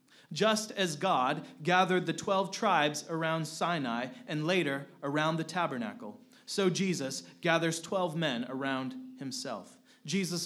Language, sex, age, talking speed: English, male, 30-49, 125 wpm